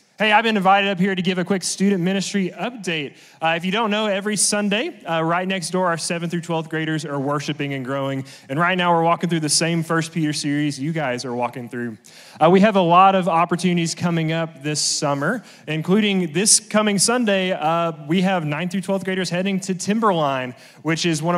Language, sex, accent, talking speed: English, male, American, 215 wpm